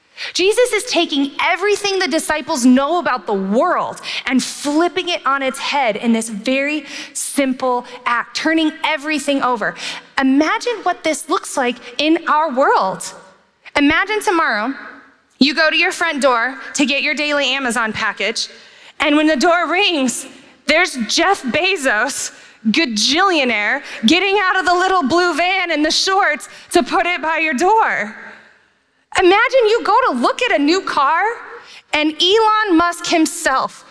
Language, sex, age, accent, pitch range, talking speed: English, female, 20-39, American, 255-355 Hz, 150 wpm